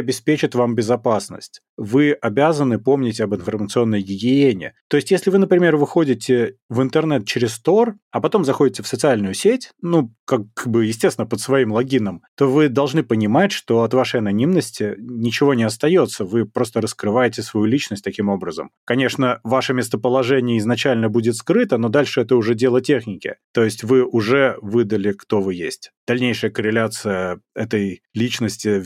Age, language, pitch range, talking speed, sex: 30-49, Russian, 110-135 Hz, 155 wpm, male